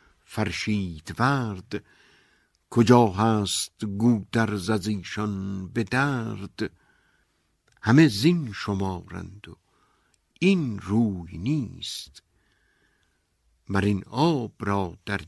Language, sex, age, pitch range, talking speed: Persian, male, 60-79, 95-115 Hz, 80 wpm